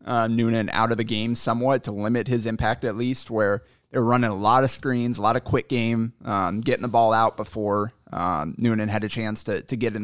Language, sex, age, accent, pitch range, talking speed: English, male, 20-39, American, 100-120 Hz, 240 wpm